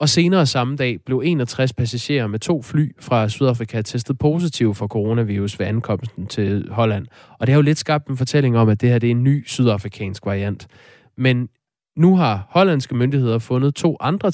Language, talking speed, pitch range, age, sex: Danish, 195 wpm, 110-140 Hz, 20-39, male